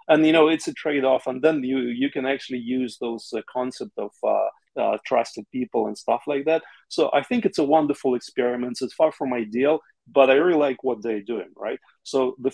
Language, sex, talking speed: Italian, male, 220 wpm